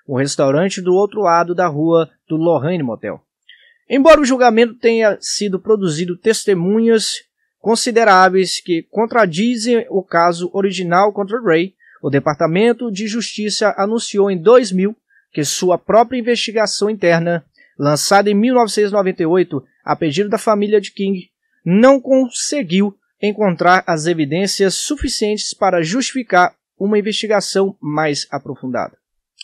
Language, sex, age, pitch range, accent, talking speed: Portuguese, male, 20-39, 160-210 Hz, Brazilian, 120 wpm